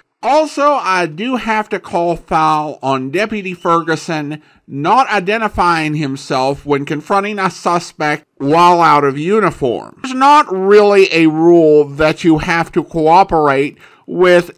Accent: American